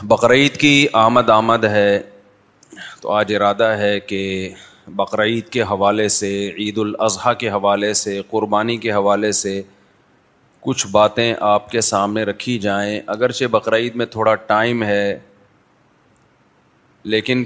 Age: 30-49